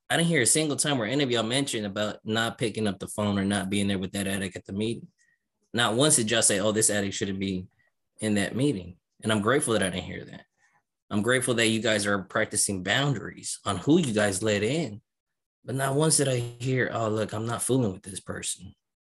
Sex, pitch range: male, 95-115 Hz